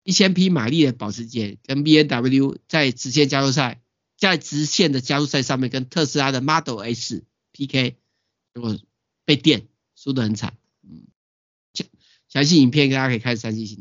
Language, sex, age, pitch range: Chinese, male, 50-69, 110-145 Hz